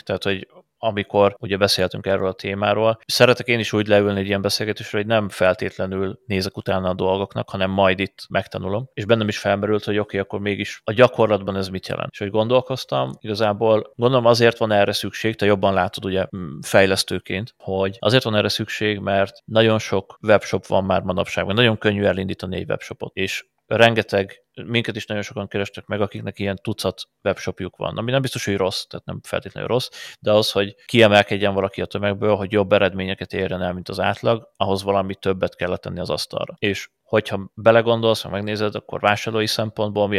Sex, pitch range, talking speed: male, 95-110 Hz, 185 wpm